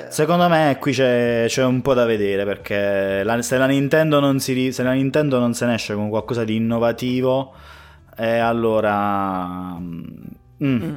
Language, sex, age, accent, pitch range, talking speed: Italian, male, 20-39, native, 100-120 Hz, 160 wpm